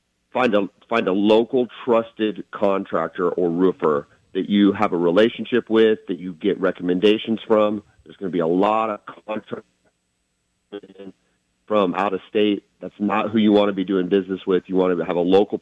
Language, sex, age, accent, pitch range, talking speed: English, male, 40-59, American, 90-105 Hz, 185 wpm